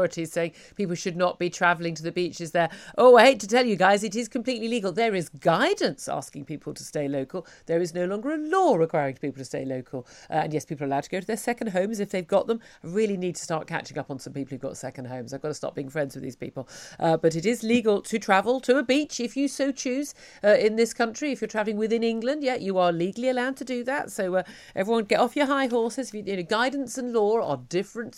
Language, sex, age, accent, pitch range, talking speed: English, female, 50-69, British, 160-225 Hz, 260 wpm